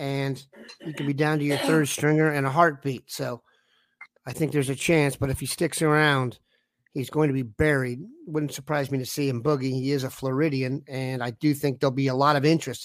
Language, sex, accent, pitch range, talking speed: English, male, American, 130-160 Hz, 230 wpm